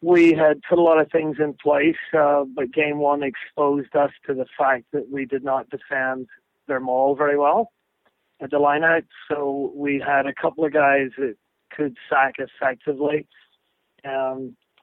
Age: 40-59